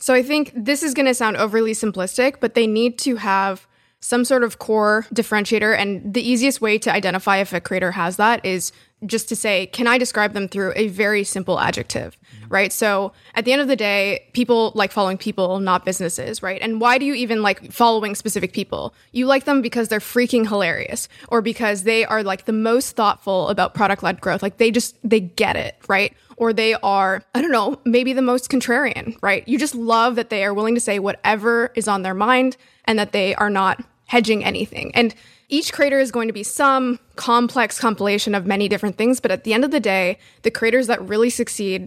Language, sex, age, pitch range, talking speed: English, female, 20-39, 200-240 Hz, 215 wpm